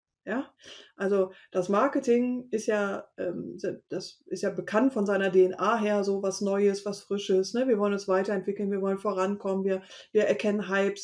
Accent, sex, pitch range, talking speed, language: German, female, 200-255 Hz, 175 wpm, German